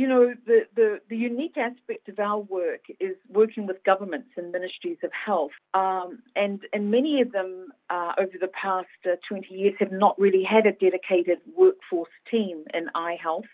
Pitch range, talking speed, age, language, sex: 180-230 Hz, 180 wpm, 40-59, English, female